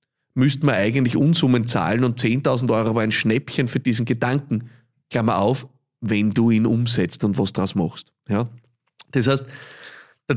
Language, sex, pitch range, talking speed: German, male, 125-165 Hz, 160 wpm